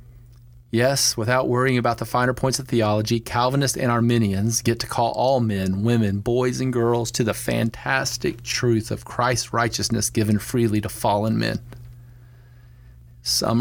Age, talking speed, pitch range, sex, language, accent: 40-59, 150 wpm, 105-120 Hz, male, English, American